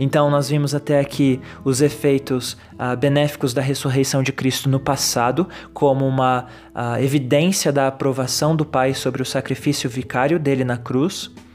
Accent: Brazilian